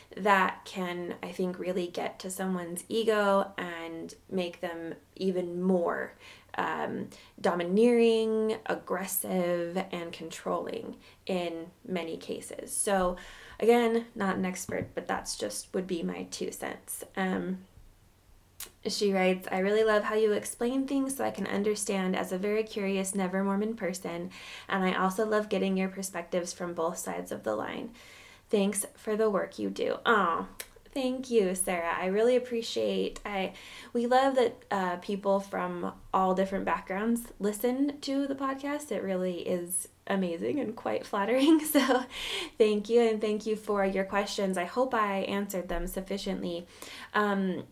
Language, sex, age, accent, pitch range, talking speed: English, female, 20-39, American, 180-225 Hz, 150 wpm